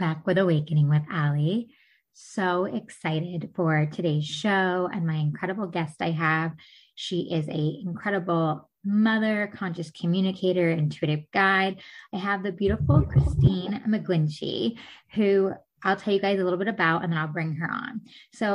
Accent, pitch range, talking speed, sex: American, 175-210 Hz, 150 wpm, female